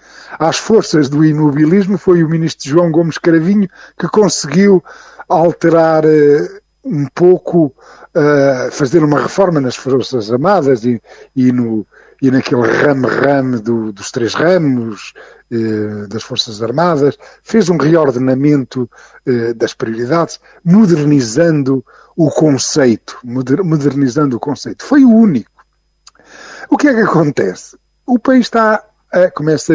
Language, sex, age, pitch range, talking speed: Portuguese, male, 50-69, 135-175 Hz, 110 wpm